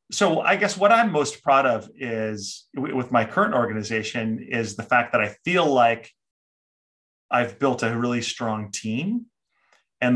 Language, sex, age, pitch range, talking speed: English, male, 30-49, 105-125 Hz, 160 wpm